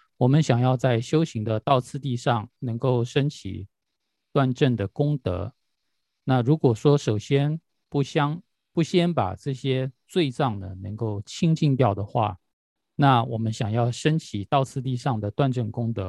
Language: Chinese